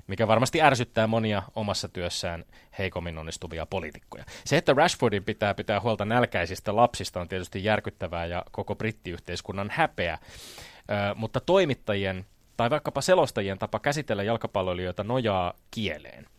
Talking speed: 130 wpm